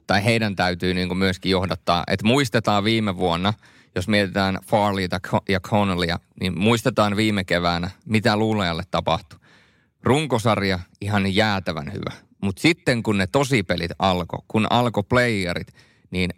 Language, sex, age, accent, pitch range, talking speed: Finnish, male, 30-49, native, 90-105 Hz, 130 wpm